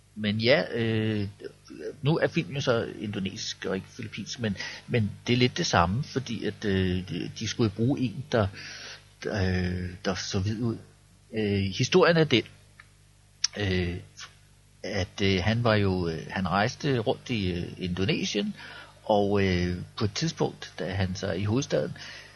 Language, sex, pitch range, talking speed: Danish, male, 95-125 Hz, 160 wpm